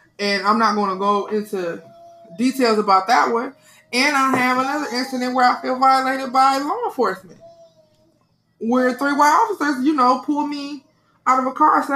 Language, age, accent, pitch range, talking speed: English, 20-39, American, 205-255 Hz, 180 wpm